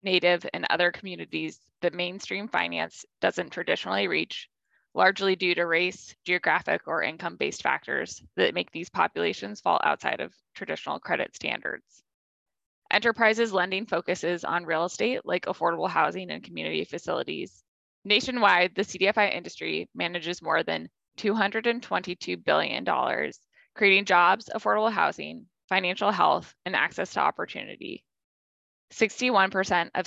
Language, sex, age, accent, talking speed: English, female, 20-39, American, 120 wpm